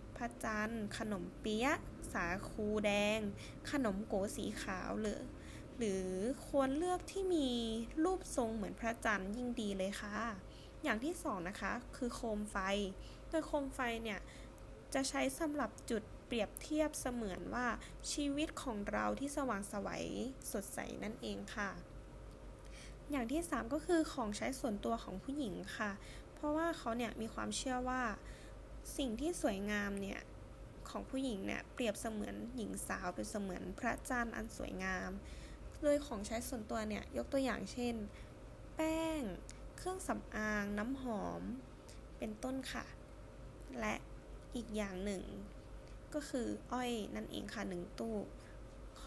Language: Thai